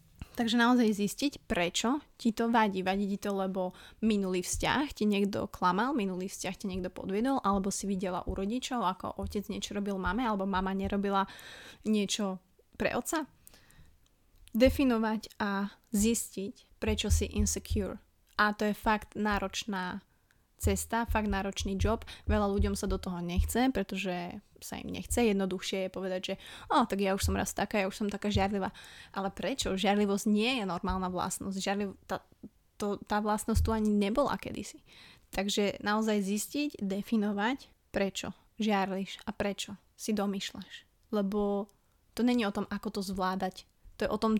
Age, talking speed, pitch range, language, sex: 20-39, 155 wpm, 195-220 Hz, Slovak, female